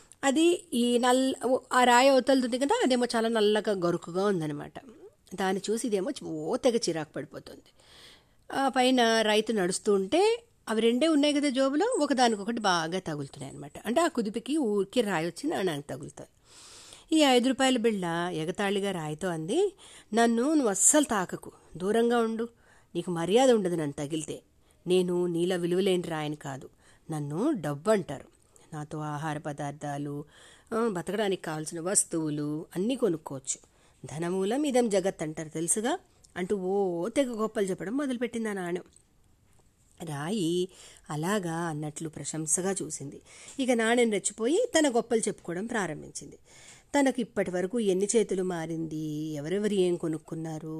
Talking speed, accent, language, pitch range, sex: 120 wpm, native, Telugu, 160-235 Hz, female